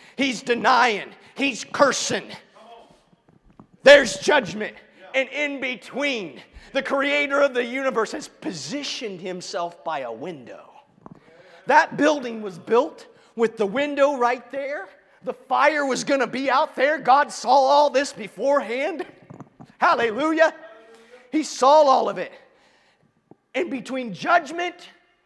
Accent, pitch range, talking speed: American, 180-285 Hz, 120 wpm